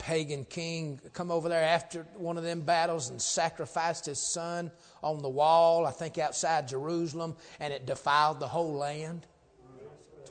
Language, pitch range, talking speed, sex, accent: English, 135-170 Hz, 165 wpm, male, American